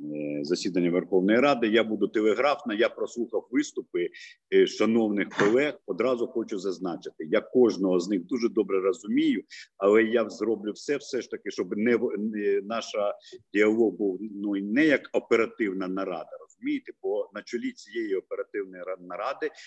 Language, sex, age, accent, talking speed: Ukrainian, male, 50-69, native, 135 wpm